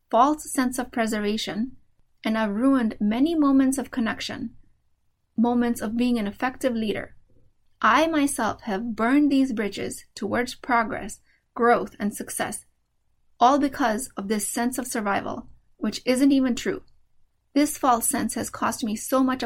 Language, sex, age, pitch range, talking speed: English, female, 30-49, 230-270 Hz, 145 wpm